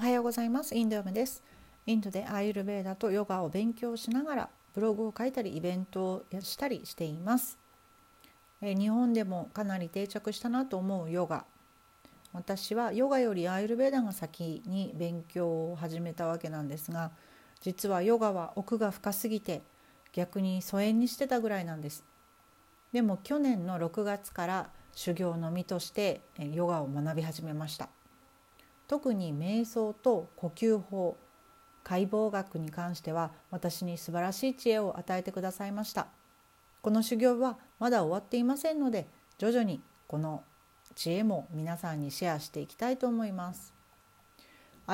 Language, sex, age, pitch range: Japanese, female, 40-59, 170-230 Hz